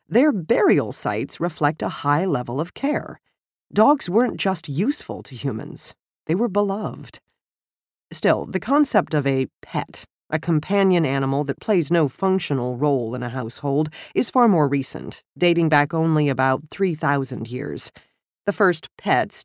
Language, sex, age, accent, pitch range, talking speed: English, female, 40-59, American, 140-205 Hz, 150 wpm